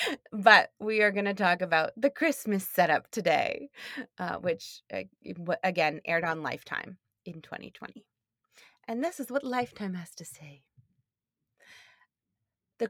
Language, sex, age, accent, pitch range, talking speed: English, female, 30-49, American, 170-245 Hz, 135 wpm